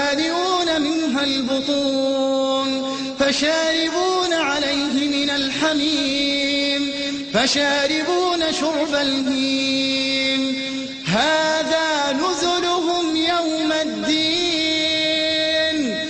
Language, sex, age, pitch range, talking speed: English, male, 30-49, 270-310 Hz, 50 wpm